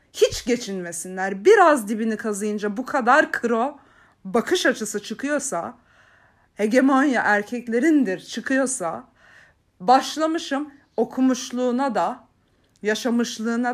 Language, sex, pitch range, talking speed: Turkish, female, 215-270 Hz, 80 wpm